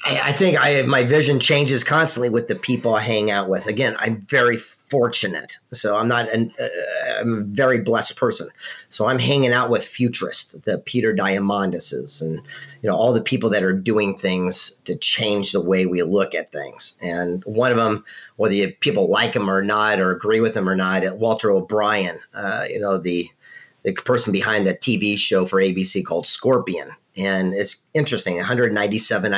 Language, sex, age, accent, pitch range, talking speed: English, male, 40-59, American, 95-125 Hz, 190 wpm